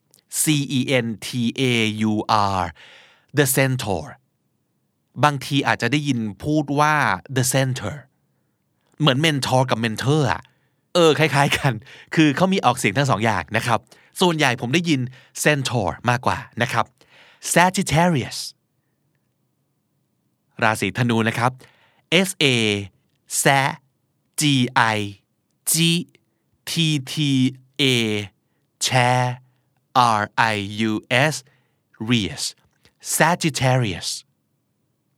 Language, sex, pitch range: Thai, male, 115-155 Hz